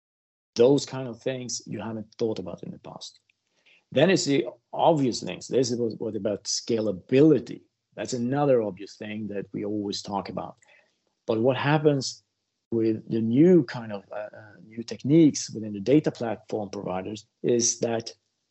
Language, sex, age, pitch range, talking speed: English, male, 50-69, 110-135 Hz, 155 wpm